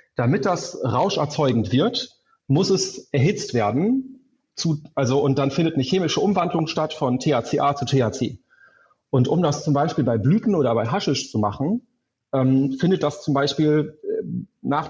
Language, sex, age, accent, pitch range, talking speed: German, male, 30-49, German, 135-175 Hz, 150 wpm